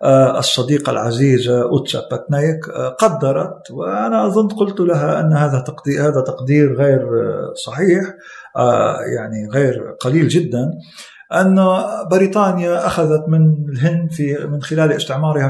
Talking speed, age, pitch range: 110 wpm, 50-69, 140-175 Hz